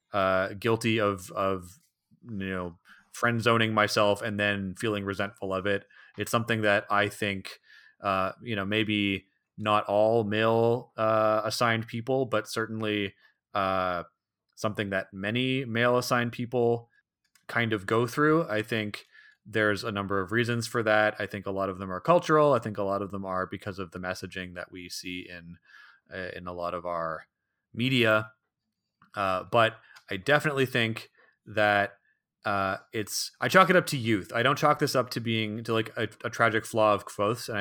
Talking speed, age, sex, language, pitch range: 175 wpm, 30-49, male, English, 95-115 Hz